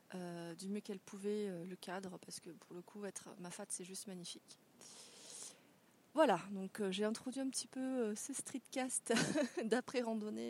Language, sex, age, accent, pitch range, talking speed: French, female, 30-49, French, 180-230 Hz, 185 wpm